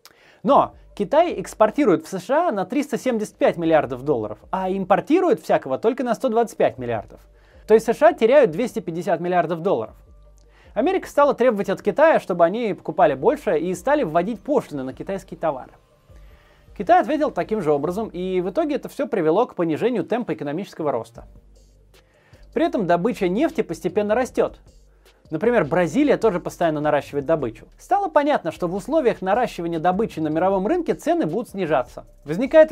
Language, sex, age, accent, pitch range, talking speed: Russian, male, 30-49, native, 165-255 Hz, 150 wpm